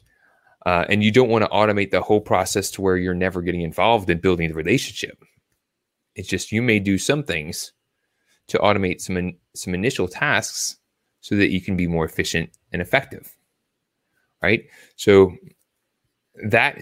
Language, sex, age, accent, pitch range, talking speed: English, male, 20-39, American, 95-115 Hz, 160 wpm